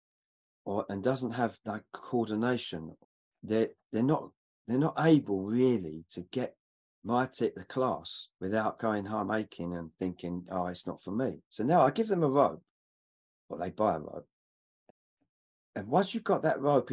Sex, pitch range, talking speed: male, 100-140 Hz, 170 wpm